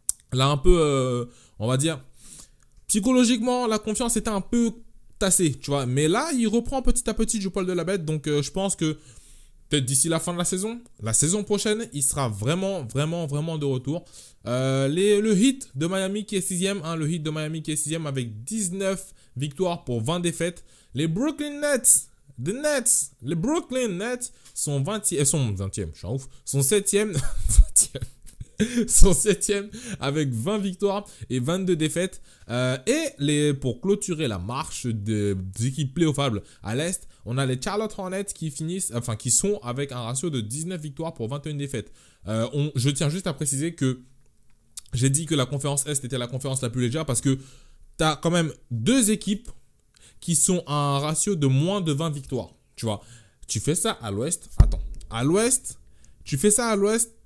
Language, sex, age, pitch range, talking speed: French, male, 20-39, 130-200 Hz, 195 wpm